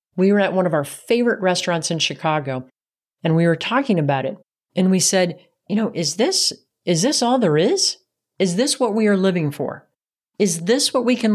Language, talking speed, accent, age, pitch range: English, 210 wpm, American, 40-59, 160-215 Hz